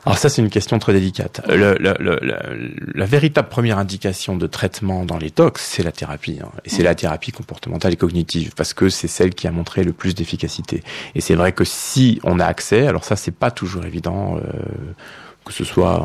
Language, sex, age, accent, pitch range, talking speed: French, male, 30-49, French, 90-110 Hz, 220 wpm